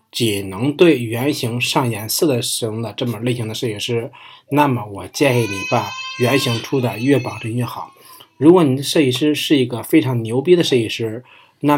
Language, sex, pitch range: Chinese, male, 120-150 Hz